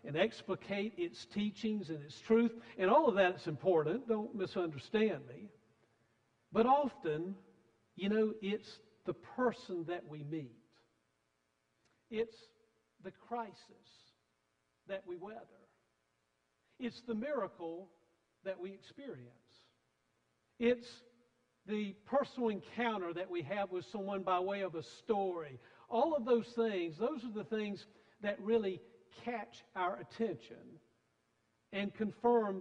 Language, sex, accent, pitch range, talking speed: English, male, American, 160-225 Hz, 125 wpm